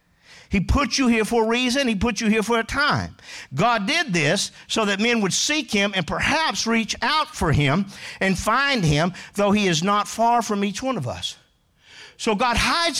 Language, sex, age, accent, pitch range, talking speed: English, male, 50-69, American, 185-240 Hz, 210 wpm